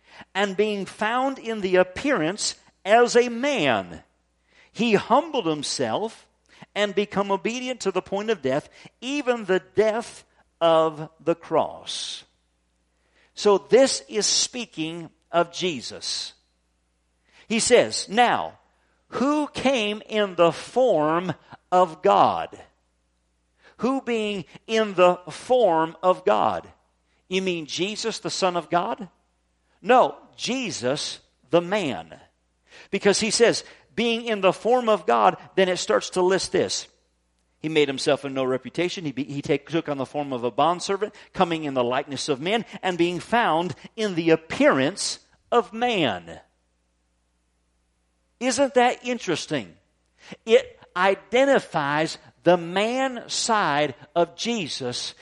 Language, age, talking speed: English, 50-69, 125 wpm